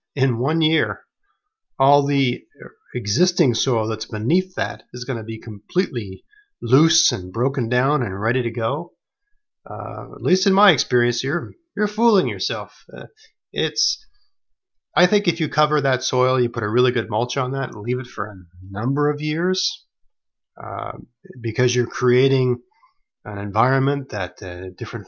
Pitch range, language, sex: 110-145 Hz, English, male